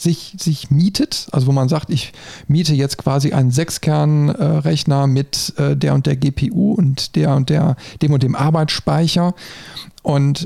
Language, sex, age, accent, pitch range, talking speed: German, male, 40-59, German, 135-160 Hz, 165 wpm